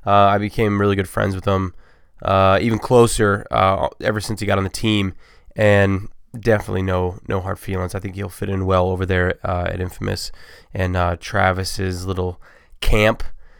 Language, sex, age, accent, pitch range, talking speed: English, male, 20-39, American, 95-115 Hz, 180 wpm